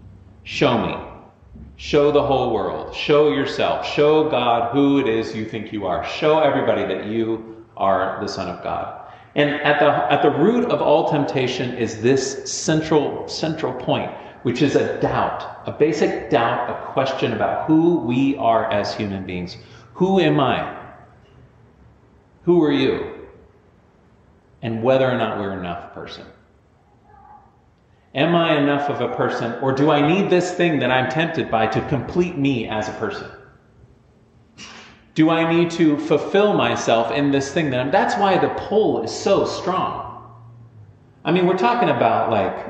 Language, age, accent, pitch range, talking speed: English, 40-59, American, 115-160 Hz, 160 wpm